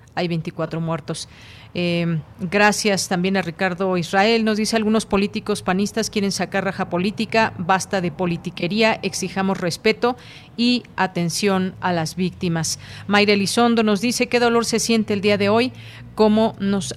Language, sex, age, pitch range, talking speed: Spanish, female, 40-59, 175-210 Hz, 150 wpm